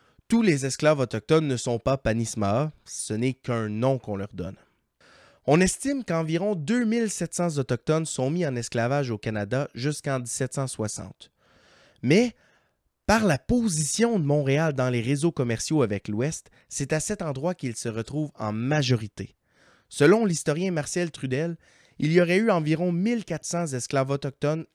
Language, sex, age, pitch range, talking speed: French, male, 20-39, 120-170 Hz, 150 wpm